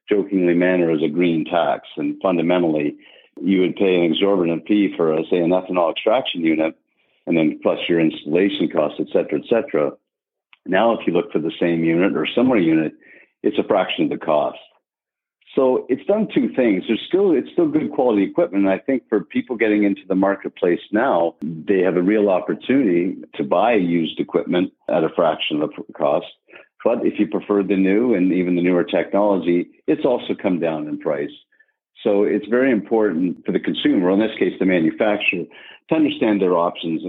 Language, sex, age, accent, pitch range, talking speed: English, male, 50-69, American, 85-105 Hz, 190 wpm